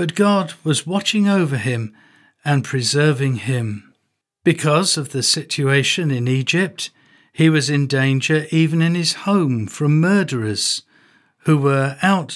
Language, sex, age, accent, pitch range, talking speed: English, male, 50-69, British, 130-170 Hz, 135 wpm